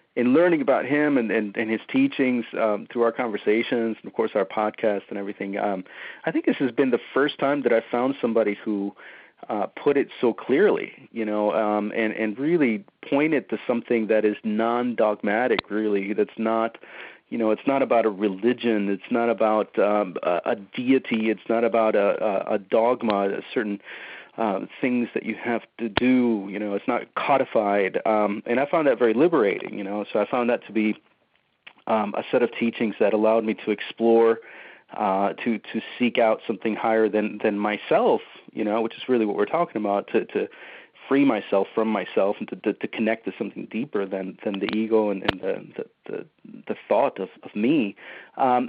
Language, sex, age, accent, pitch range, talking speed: English, male, 40-59, American, 105-120 Hz, 200 wpm